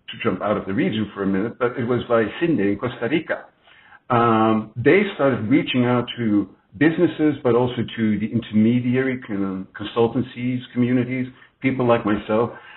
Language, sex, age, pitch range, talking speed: English, male, 60-79, 110-130 Hz, 160 wpm